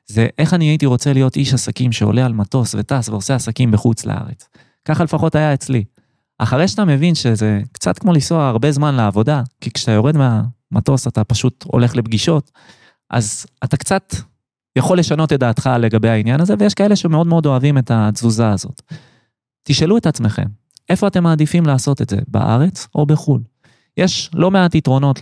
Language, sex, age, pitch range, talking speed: Hebrew, male, 20-39, 120-165 Hz, 170 wpm